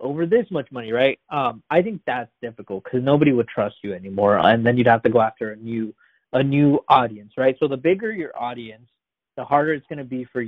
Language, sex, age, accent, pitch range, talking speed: English, male, 20-39, American, 120-145 Hz, 235 wpm